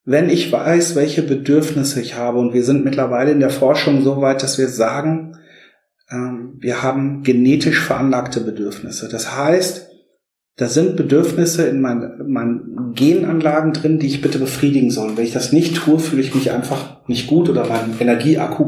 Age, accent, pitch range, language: 40-59, German, 130-155 Hz, German